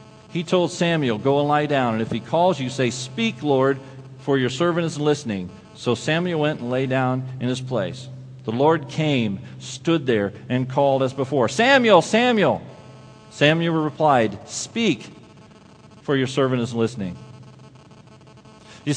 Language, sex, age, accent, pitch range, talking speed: English, male, 40-59, American, 120-165 Hz, 155 wpm